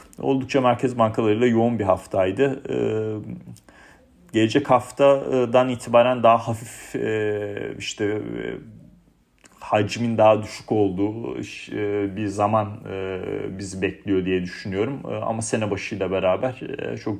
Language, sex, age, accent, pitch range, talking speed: Turkish, male, 40-59, native, 95-115 Hz, 95 wpm